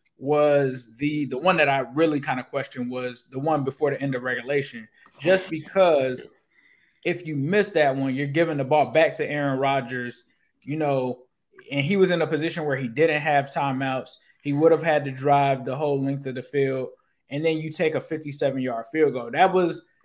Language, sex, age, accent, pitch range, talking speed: English, male, 20-39, American, 130-155 Hz, 205 wpm